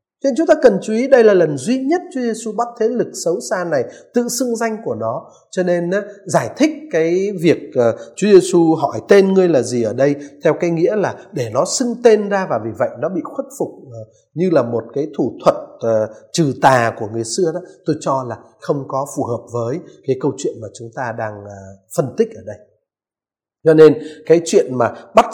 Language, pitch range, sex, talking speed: Vietnamese, 135-215 Hz, male, 220 wpm